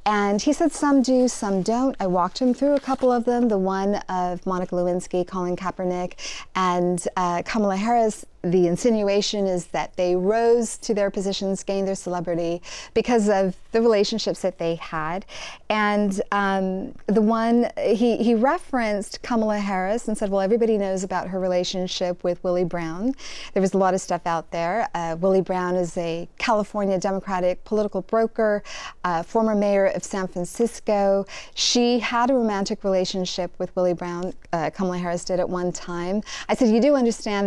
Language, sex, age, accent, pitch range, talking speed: English, female, 40-59, American, 185-235 Hz, 175 wpm